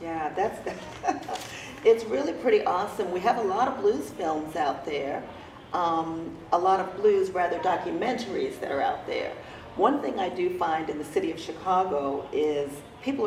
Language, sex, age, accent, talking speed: English, female, 40-59, American, 175 wpm